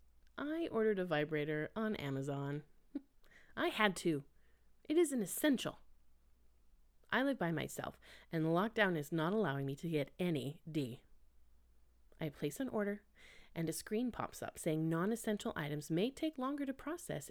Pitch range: 145-220 Hz